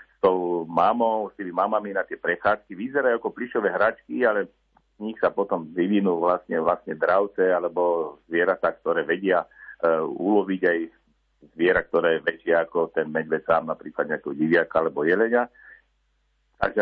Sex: male